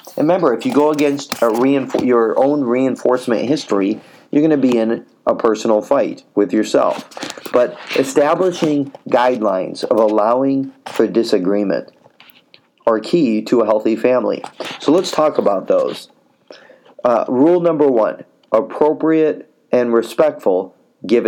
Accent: American